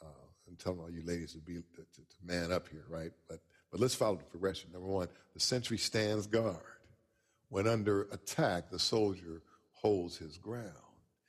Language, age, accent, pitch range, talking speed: English, 50-69, American, 85-110 Hz, 170 wpm